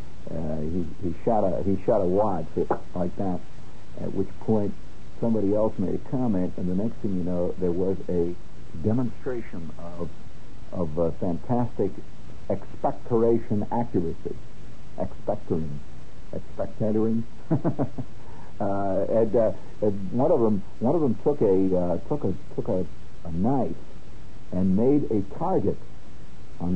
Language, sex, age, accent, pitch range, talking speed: English, male, 60-79, American, 90-110 Hz, 130 wpm